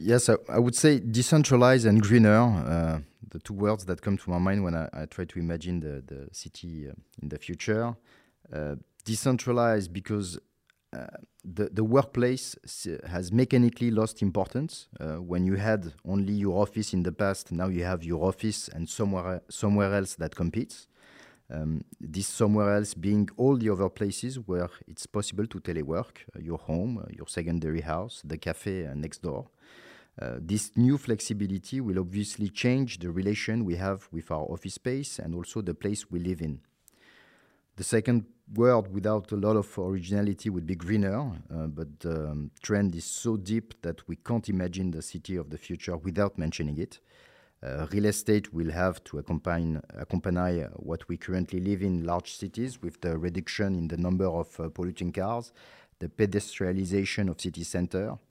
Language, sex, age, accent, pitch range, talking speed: French, male, 30-49, French, 85-110 Hz, 175 wpm